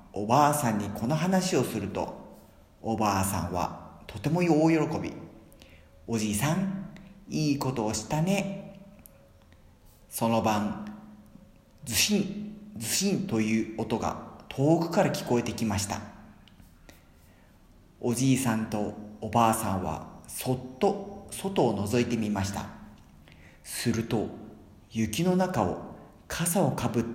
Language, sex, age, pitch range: Spanish, male, 40-59, 100-145 Hz